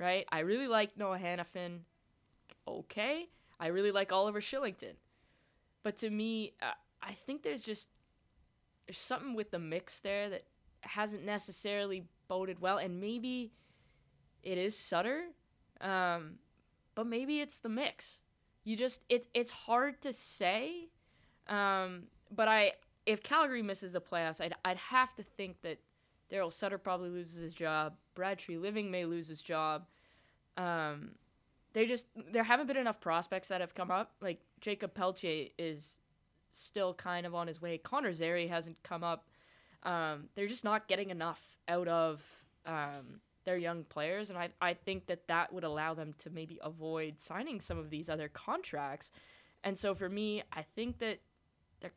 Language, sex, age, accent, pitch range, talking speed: English, female, 20-39, American, 170-210 Hz, 165 wpm